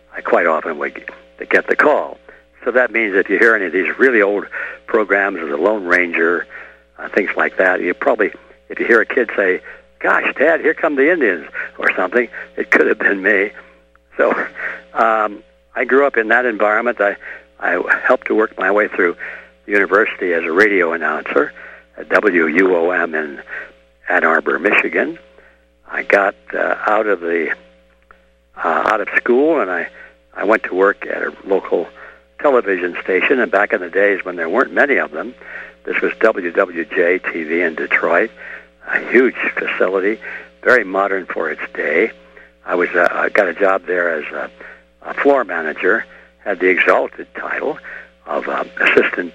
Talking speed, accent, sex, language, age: 175 wpm, American, male, English, 60-79